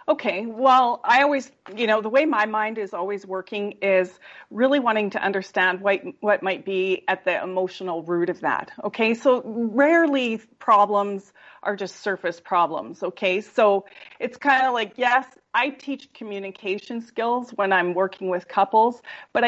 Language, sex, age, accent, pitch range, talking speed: English, female, 30-49, American, 190-270 Hz, 165 wpm